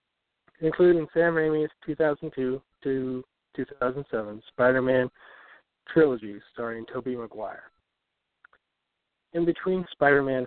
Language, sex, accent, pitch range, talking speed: English, male, American, 120-155 Hz, 75 wpm